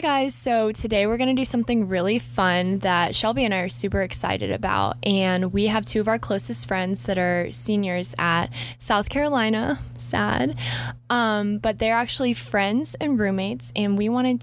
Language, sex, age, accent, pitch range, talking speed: English, female, 10-29, American, 175-215 Hz, 180 wpm